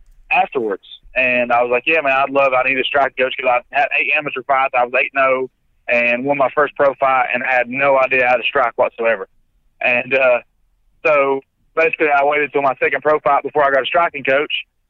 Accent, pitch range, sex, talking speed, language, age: American, 125-145 Hz, male, 220 wpm, English, 20-39